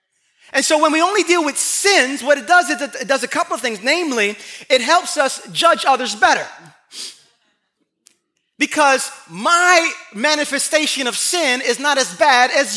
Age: 30-49